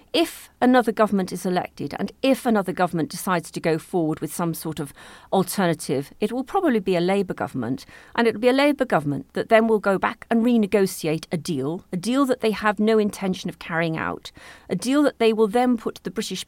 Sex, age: female, 40-59